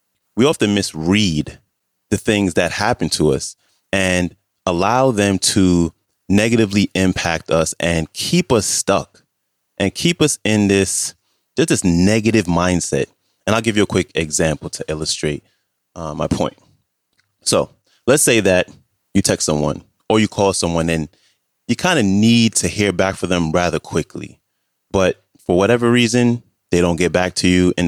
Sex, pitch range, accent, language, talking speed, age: male, 85-110 Hz, American, English, 160 wpm, 30-49